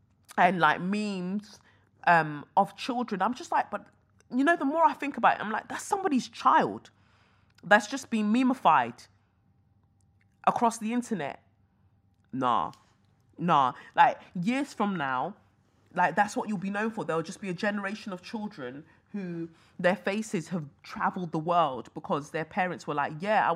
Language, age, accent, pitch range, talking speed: English, 20-39, British, 155-215 Hz, 165 wpm